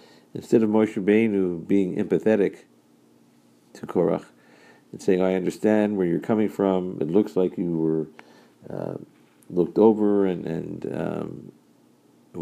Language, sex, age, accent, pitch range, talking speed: English, male, 50-69, American, 95-110 Hz, 130 wpm